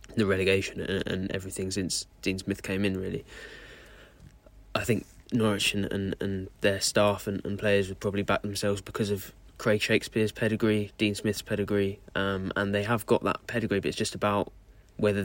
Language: English